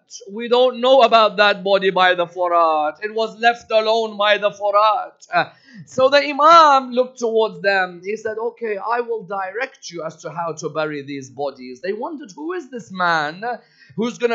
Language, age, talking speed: English, 30-49, 185 wpm